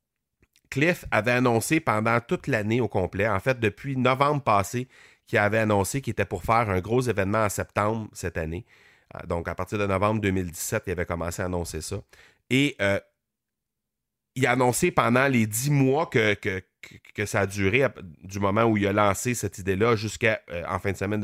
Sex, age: male, 30-49